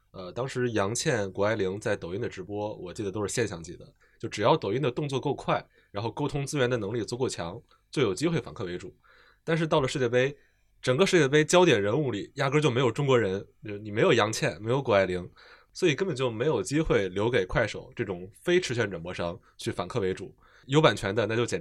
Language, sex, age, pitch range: Chinese, male, 20-39, 100-130 Hz